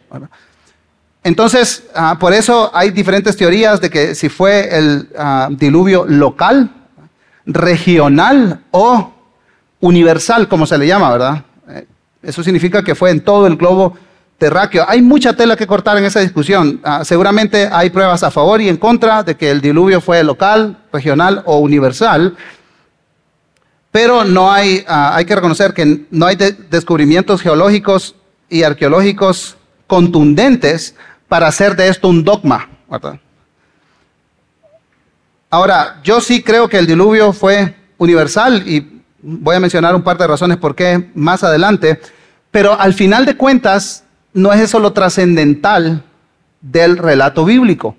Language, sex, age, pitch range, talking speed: Spanish, male, 40-59, 165-205 Hz, 145 wpm